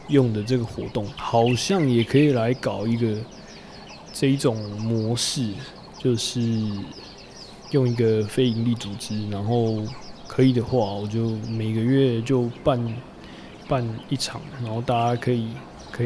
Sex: male